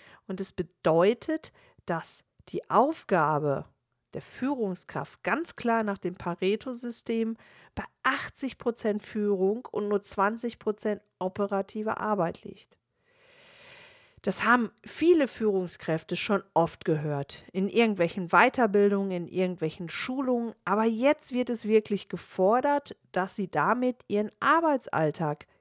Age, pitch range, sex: 50-69, 185-240 Hz, female